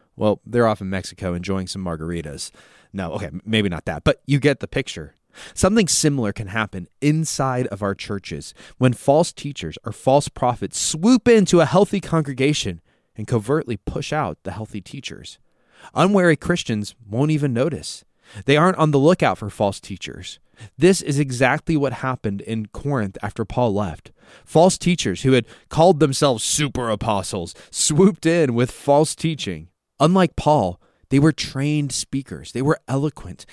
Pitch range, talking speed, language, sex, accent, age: 105-150 Hz, 160 wpm, English, male, American, 20-39